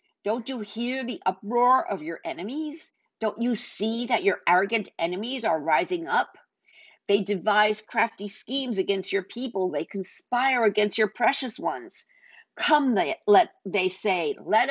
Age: 50-69